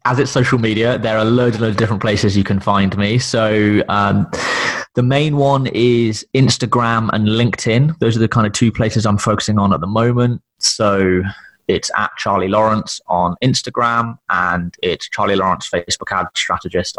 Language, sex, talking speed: English, male, 185 wpm